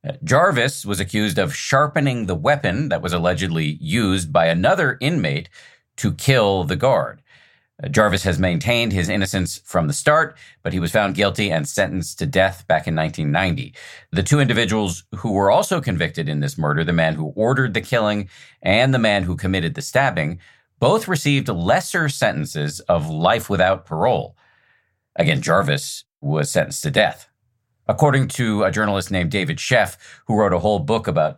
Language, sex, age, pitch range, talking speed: English, male, 40-59, 95-130 Hz, 170 wpm